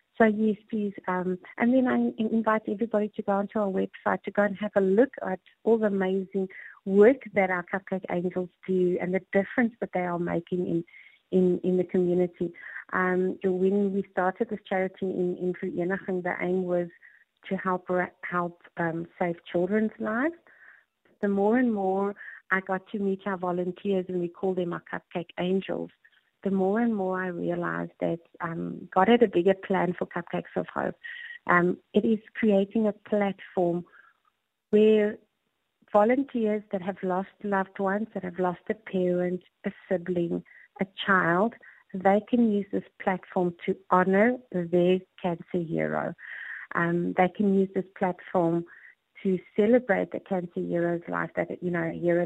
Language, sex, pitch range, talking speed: English, female, 180-210 Hz, 165 wpm